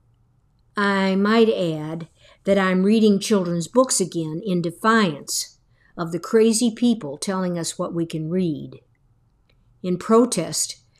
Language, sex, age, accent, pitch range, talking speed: English, female, 60-79, American, 135-200 Hz, 125 wpm